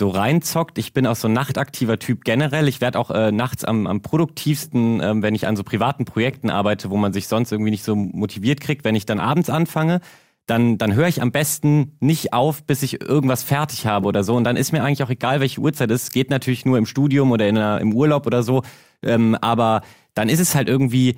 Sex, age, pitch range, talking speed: male, 30-49, 115-150 Hz, 245 wpm